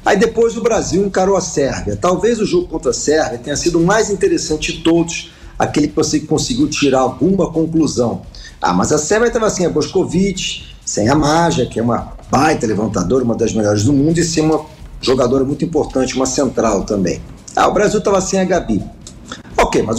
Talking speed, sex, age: 200 wpm, male, 50-69